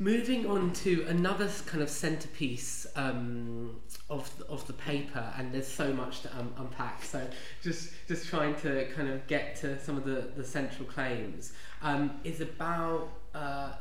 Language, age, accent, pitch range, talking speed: English, 20-39, British, 125-150 Hz, 170 wpm